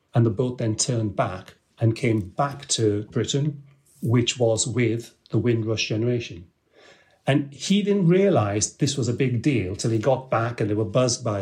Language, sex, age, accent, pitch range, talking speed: English, male, 40-59, British, 115-140 Hz, 185 wpm